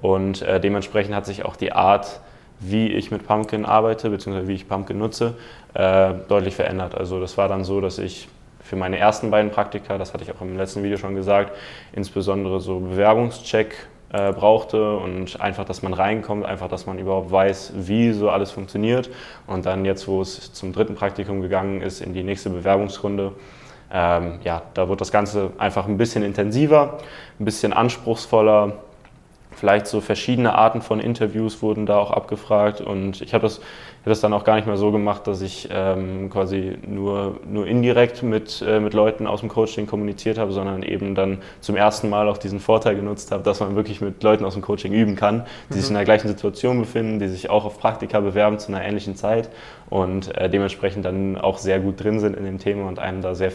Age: 20-39